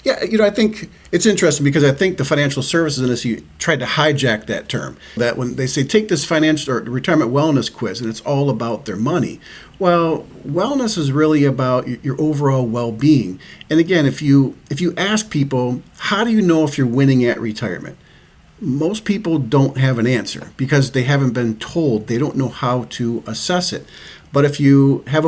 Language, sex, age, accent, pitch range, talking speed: English, male, 40-59, American, 120-155 Hz, 195 wpm